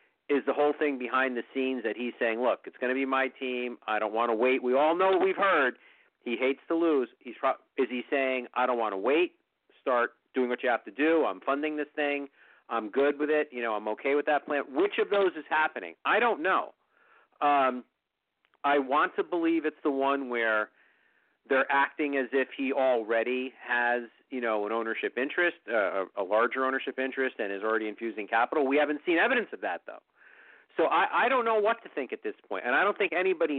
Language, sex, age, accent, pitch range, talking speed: English, male, 40-59, American, 120-155 Hz, 225 wpm